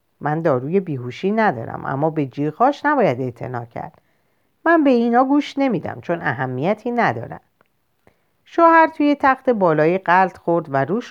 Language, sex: Persian, female